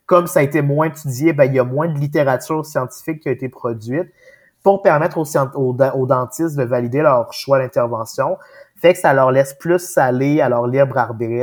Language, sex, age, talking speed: French, male, 30-49, 205 wpm